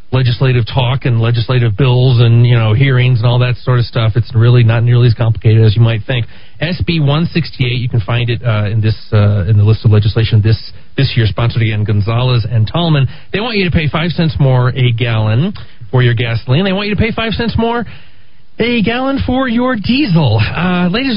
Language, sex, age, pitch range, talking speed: English, male, 40-59, 110-135 Hz, 215 wpm